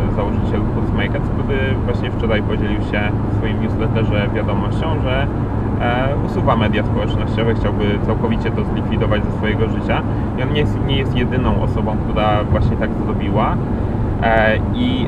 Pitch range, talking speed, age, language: 105-120 Hz, 135 wpm, 30-49, Polish